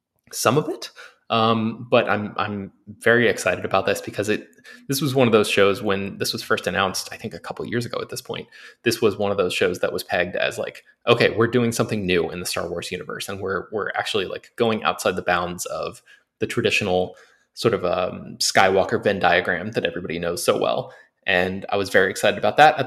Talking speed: 225 wpm